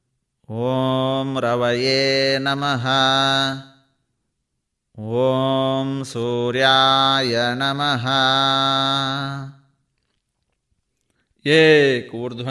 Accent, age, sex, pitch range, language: native, 20-39, male, 125-140 Hz, Kannada